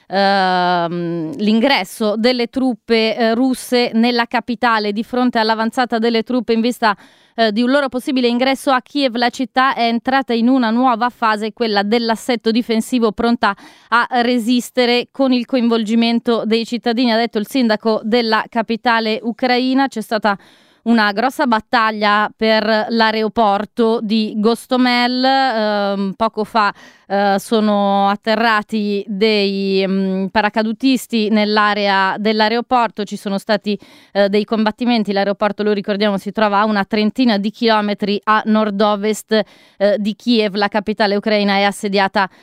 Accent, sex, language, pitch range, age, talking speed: native, female, Italian, 210-235 Hz, 20-39, 125 wpm